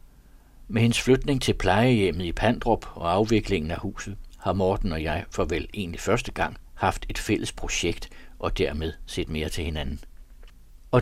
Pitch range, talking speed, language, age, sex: 90-125 Hz, 170 wpm, Danish, 60-79, male